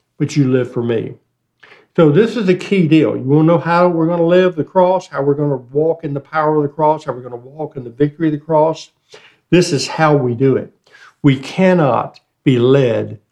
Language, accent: English, American